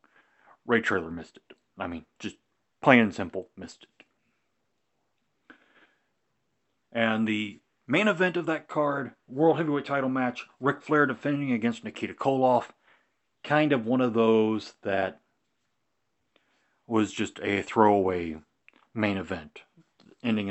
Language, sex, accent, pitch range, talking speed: English, male, American, 105-130 Hz, 125 wpm